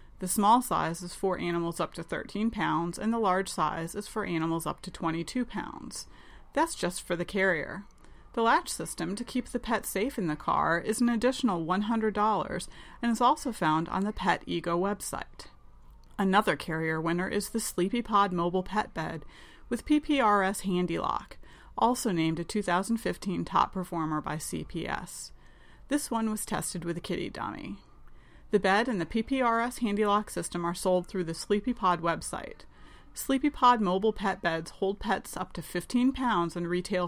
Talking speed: 170 wpm